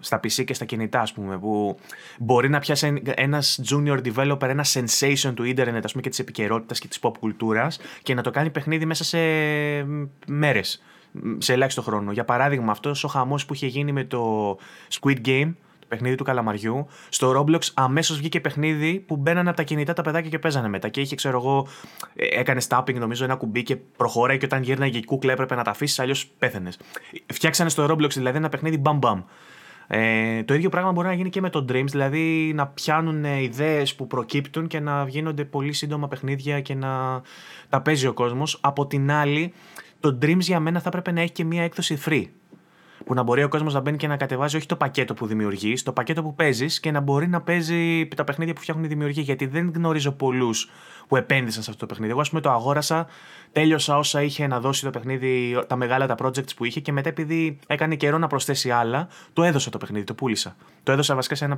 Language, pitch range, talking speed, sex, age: Greek, 125-155 Hz, 210 wpm, male, 20-39